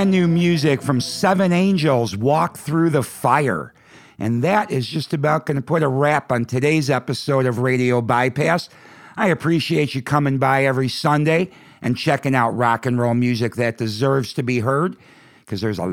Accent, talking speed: American, 175 wpm